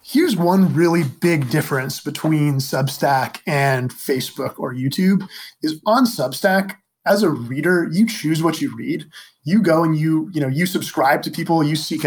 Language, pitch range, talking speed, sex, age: English, 145-180 Hz, 170 wpm, male, 20-39